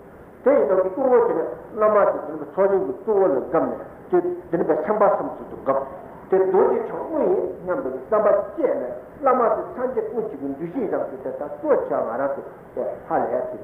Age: 60-79